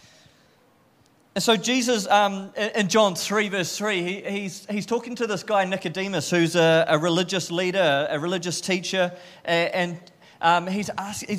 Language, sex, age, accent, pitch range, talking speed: English, male, 30-49, Australian, 175-215 Hz, 155 wpm